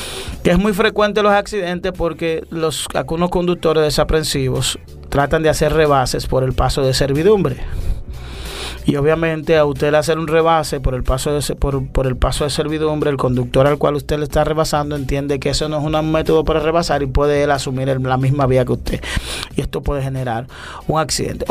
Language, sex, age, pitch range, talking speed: Spanish, male, 30-49, 135-160 Hz, 195 wpm